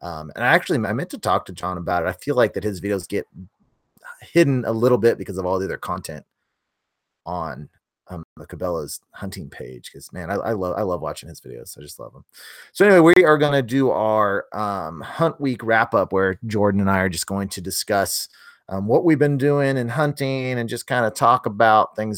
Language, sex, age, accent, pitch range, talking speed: English, male, 30-49, American, 95-130 Hz, 230 wpm